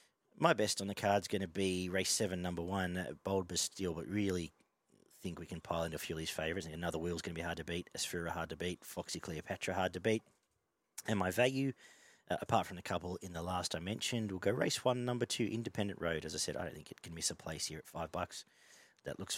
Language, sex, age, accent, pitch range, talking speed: English, male, 40-59, Australian, 85-110 Hz, 255 wpm